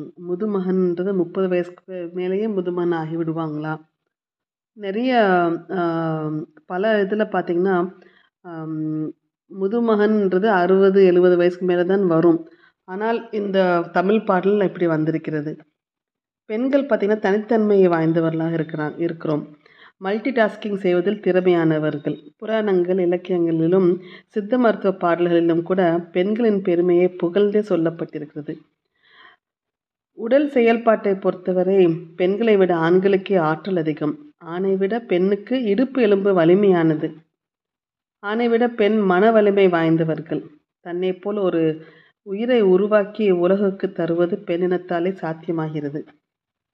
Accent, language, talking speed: native, Tamil, 95 wpm